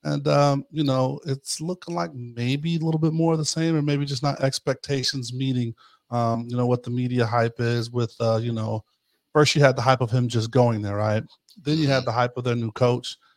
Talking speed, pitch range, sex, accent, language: 240 wpm, 125-145 Hz, male, American, English